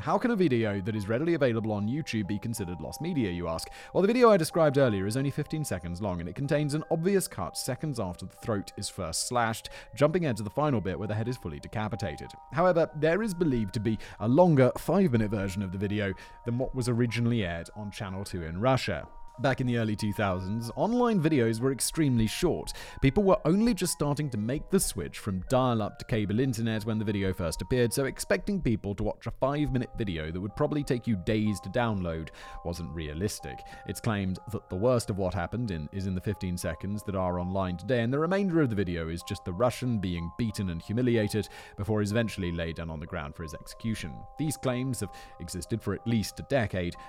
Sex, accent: male, British